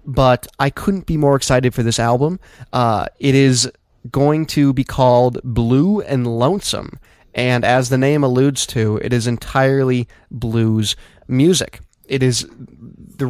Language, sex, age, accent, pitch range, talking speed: English, male, 20-39, American, 120-140 Hz, 150 wpm